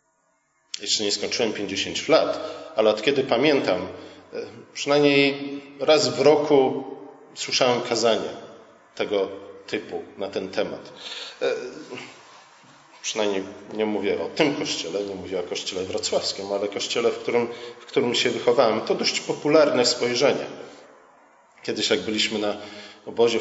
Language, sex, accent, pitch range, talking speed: Polish, male, native, 105-155 Hz, 125 wpm